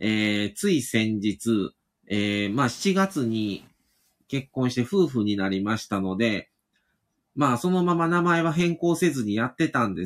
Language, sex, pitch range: Japanese, male, 105-155 Hz